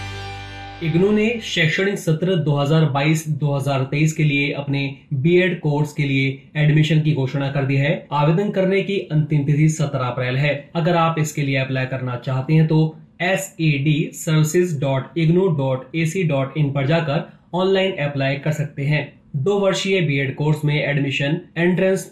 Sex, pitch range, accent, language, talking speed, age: male, 140-170 Hz, native, Hindi, 135 wpm, 20-39